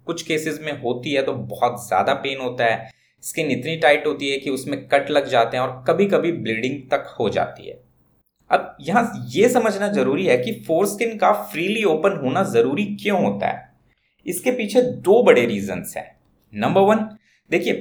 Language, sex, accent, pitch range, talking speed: Hindi, male, native, 140-205 Hz, 180 wpm